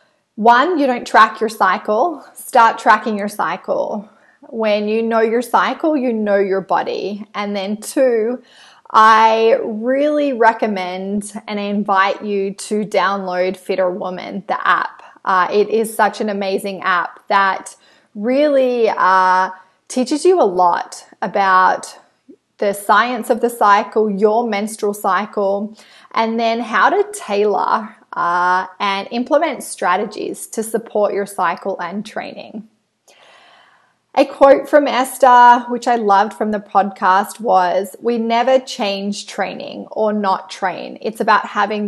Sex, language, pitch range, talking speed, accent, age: female, English, 195-240 Hz, 135 wpm, Australian, 20-39